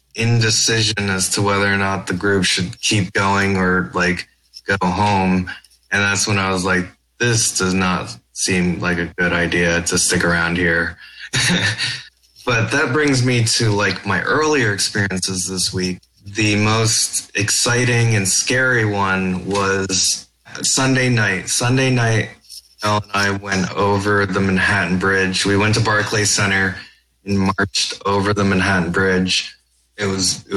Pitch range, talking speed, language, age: 95-105 Hz, 150 wpm, English, 20-39